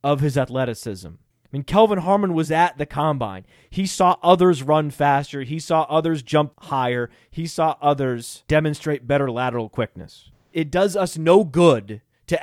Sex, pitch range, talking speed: male, 130-180 Hz, 165 wpm